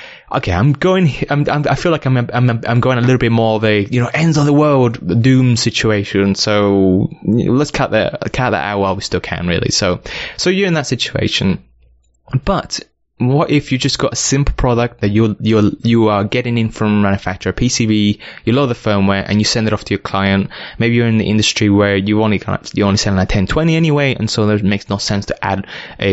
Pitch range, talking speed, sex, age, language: 100-125 Hz, 235 wpm, male, 20-39, English